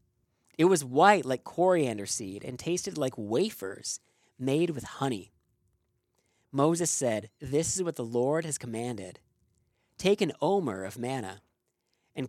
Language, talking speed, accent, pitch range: English, 135 wpm, American, 115-170 Hz